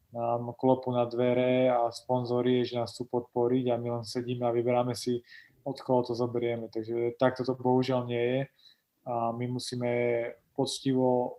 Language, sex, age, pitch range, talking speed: Slovak, male, 20-39, 120-130 Hz, 160 wpm